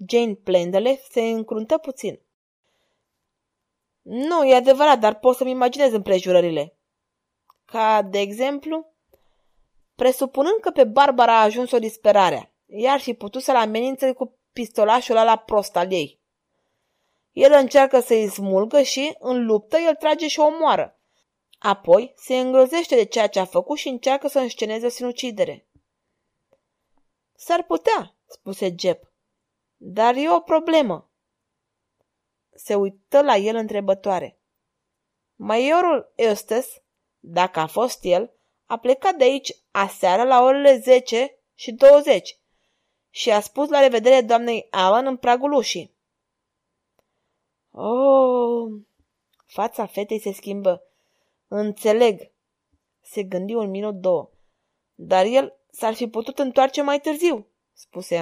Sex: female